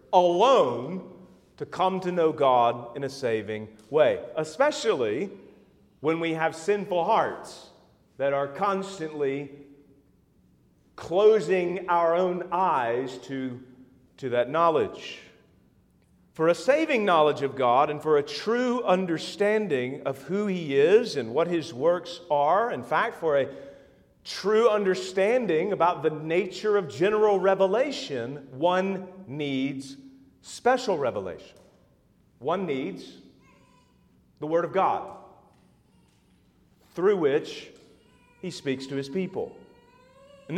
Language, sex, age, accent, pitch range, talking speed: English, male, 40-59, American, 145-205 Hz, 115 wpm